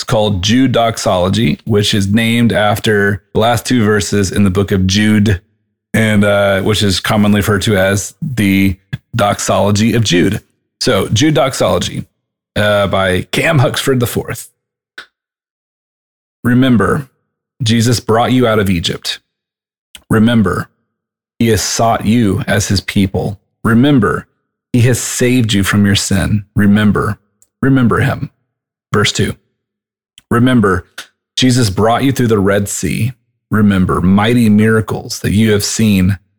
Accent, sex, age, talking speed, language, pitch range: American, male, 30-49, 130 wpm, English, 100-120 Hz